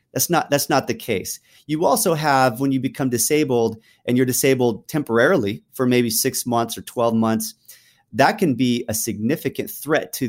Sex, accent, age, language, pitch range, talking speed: male, American, 30-49, English, 110-150 Hz, 175 wpm